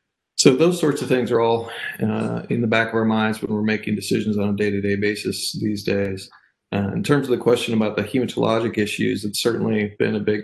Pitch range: 100-110 Hz